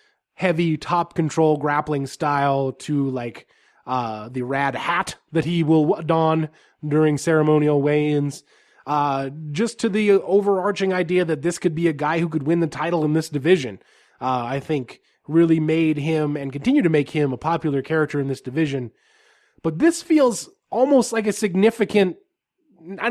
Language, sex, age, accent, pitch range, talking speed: English, male, 20-39, American, 145-180 Hz, 160 wpm